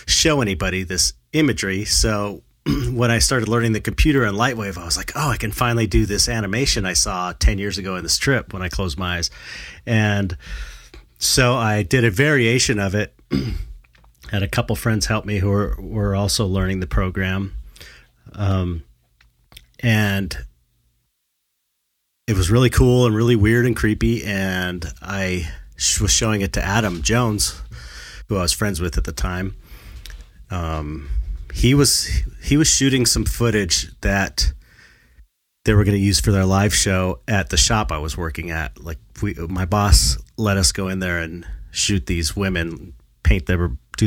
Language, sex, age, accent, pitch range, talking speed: English, male, 30-49, American, 85-105 Hz, 170 wpm